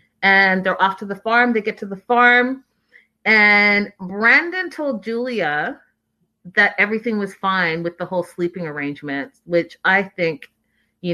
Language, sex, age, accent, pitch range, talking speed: English, female, 30-49, American, 180-240 Hz, 150 wpm